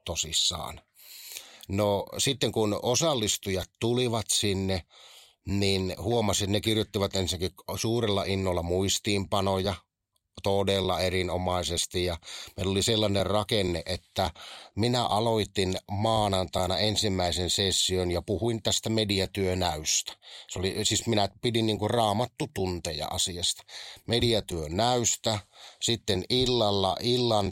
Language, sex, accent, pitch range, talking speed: Finnish, male, native, 95-115 Hz, 95 wpm